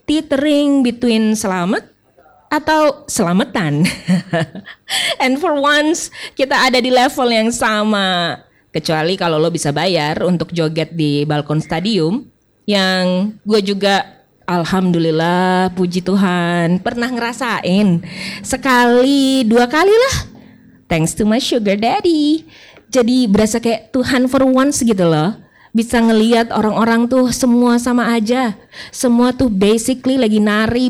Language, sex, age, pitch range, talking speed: Indonesian, female, 20-39, 185-255 Hz, 120 wpm